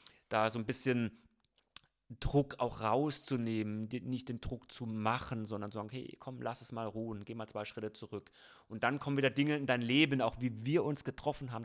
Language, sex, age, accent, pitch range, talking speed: German, male, 30-49, German, 110-130 Hz, 205 wpm